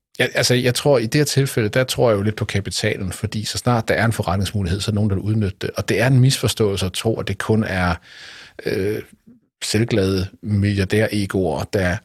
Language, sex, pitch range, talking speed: Danish, male, 95-115 Hz, 215 wpm